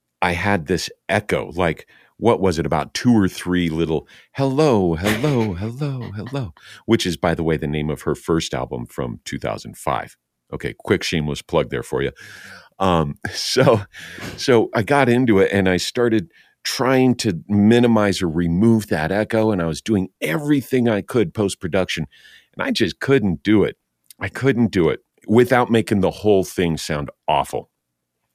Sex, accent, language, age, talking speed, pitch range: male, American, English, 50-69, 165 wpm, 80-110 Hz